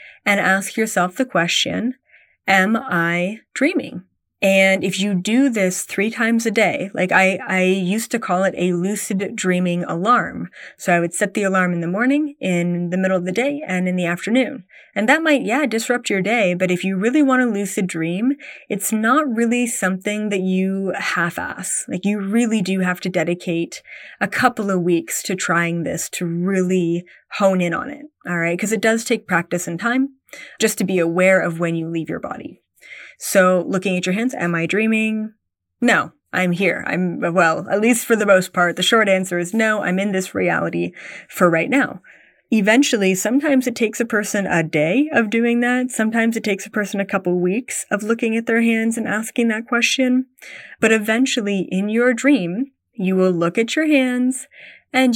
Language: English